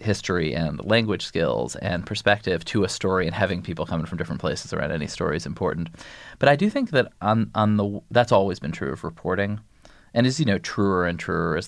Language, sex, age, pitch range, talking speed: English, male, 20-39, 85-105 Hz, 220 wpm